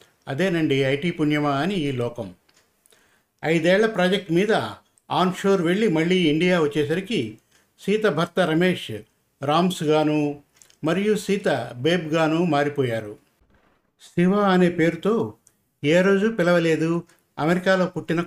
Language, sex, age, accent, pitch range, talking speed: Telugu, male, 50-69, native, 150-190 Hz, 95 wpm